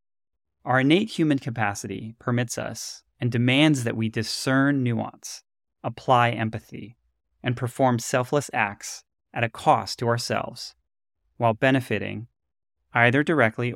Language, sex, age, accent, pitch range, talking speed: English, male, 30-49, American, 100-125 Hz, 120 wpm